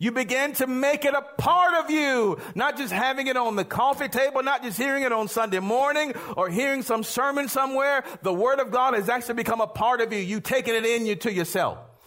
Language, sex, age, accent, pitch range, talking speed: English, male, 50-69, American, 185-260 Hz, 235 wpm